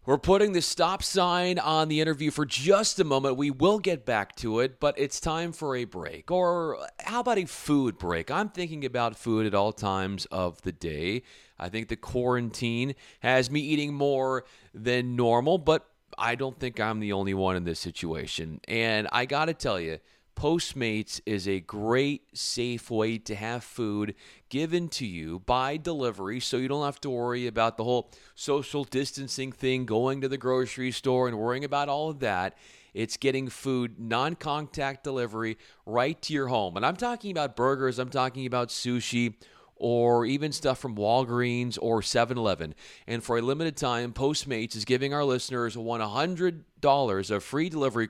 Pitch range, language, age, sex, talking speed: 115-145 Hz, English, 30-49, male, 180 wpm